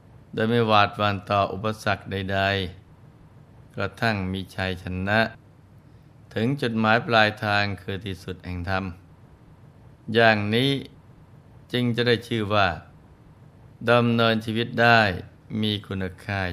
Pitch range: 90-105 Hz